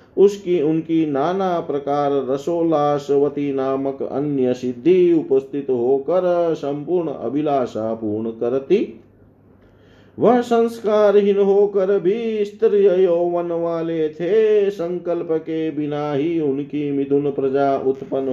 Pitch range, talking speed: 130-180 Hz, 95 wpm